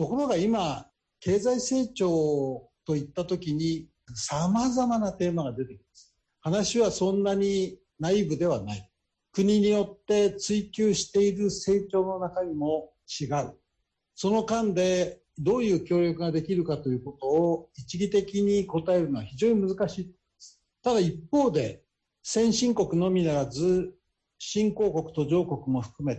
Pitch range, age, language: 150-205 Hz, 60-79, Japanese